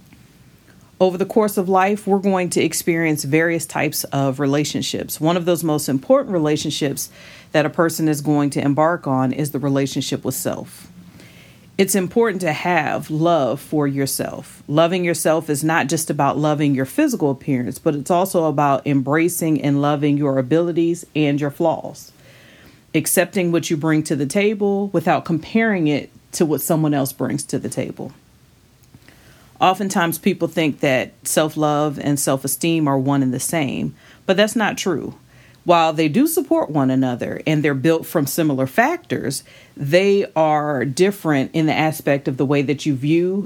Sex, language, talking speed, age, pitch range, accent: female, English, 165 wpm, 40-59, 145-185 Hz, American